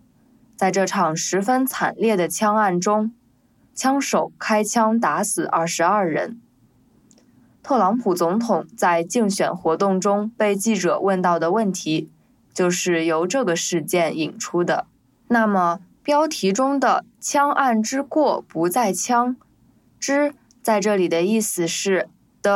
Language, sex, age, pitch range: English, female, 20-39, 180-245 Hz